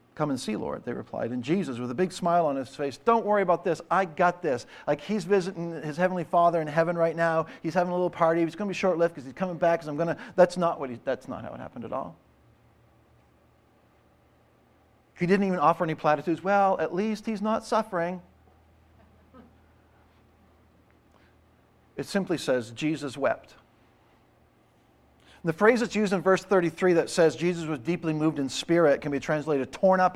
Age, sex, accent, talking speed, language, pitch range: 50-69, male, American, 190 wpm, English, 145-185 Hz